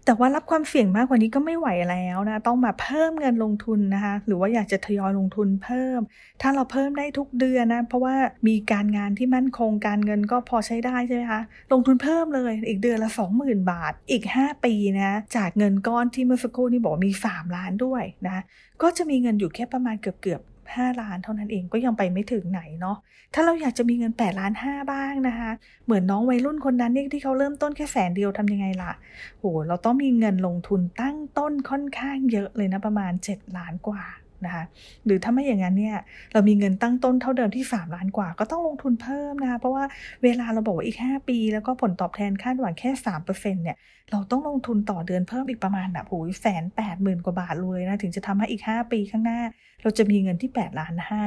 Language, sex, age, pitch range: English, female, 30-49, 195-255 Hz